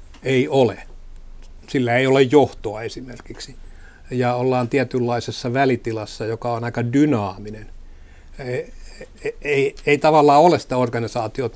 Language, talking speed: Finnish, 115 wpm